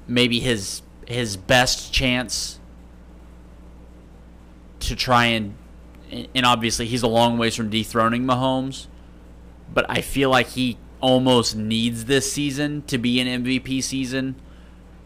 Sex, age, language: male, 30-49, English